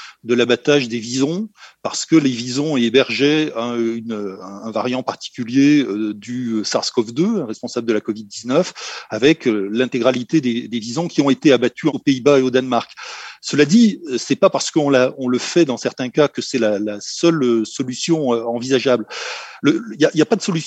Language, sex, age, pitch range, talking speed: French, male, 40-59, 120-155 Hz, 165 wpm